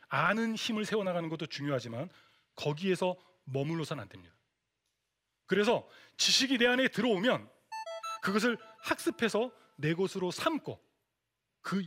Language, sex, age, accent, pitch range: Korean, male, 30-49, native, 155-245 Hz